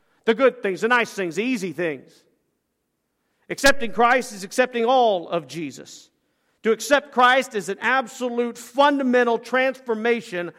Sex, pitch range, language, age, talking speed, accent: male, 185-255 Hz, English, 50-69, 135 wpm, American